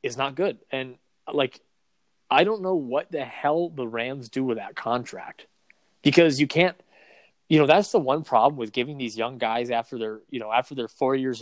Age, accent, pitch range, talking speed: 20-39, American, 115-140 Hz, 205 wpm